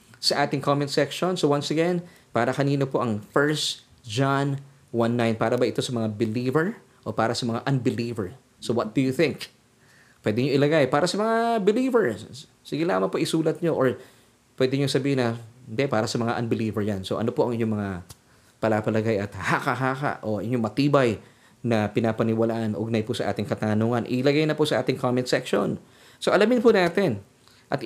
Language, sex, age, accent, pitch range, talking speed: Filipino, male, 20-39, native, 115-145 Hz, 180 wpm